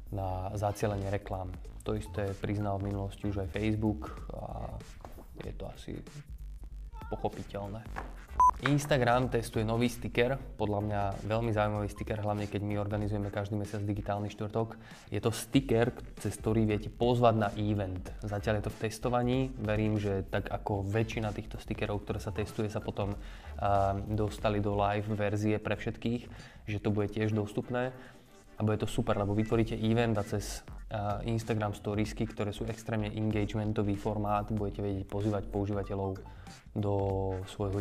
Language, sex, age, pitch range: Slovak, male, 20-39, 100-115 Hz